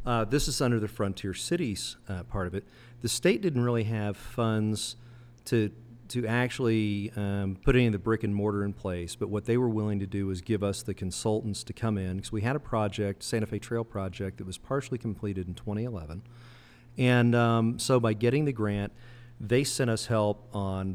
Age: 40-59